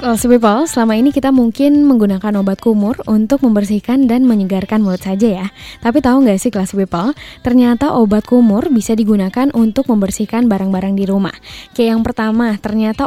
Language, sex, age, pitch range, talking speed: Indonesian, female, 10-29, 200-245 Hz, 165 wpm